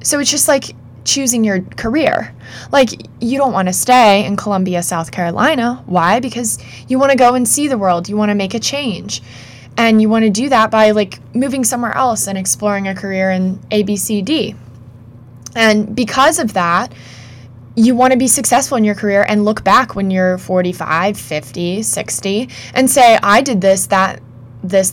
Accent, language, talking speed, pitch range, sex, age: American, English, 195 wpm, 165-220 Hz, female, 20-39